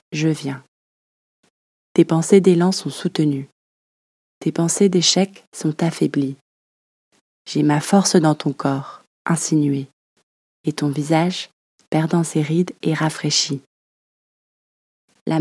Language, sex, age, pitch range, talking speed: French, female, 20-39, 145-170 Hz, 110 wpm